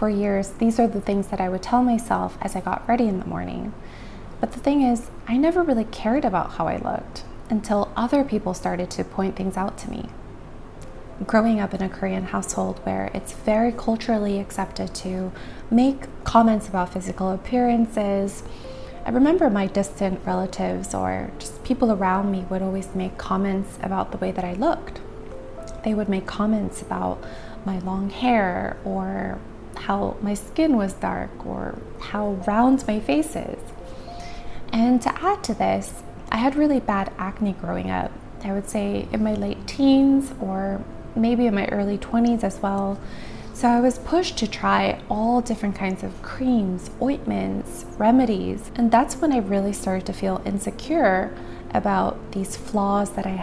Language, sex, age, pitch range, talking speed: English, female, 20-39, 185-235 Hz, 170 wpm